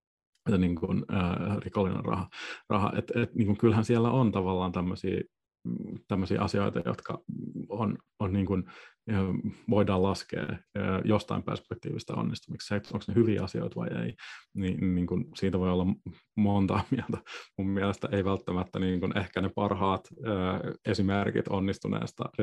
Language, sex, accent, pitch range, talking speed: Finnish, male, native, 95-105 Hz, 130 wpm